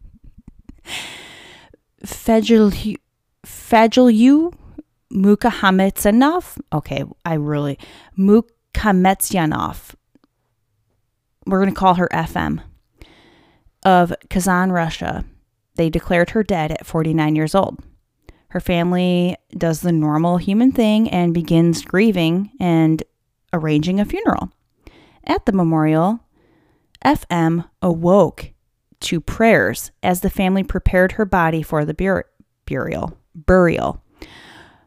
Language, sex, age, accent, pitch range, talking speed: English, female, 10-29, American, 160-195 Hz, 95 wpm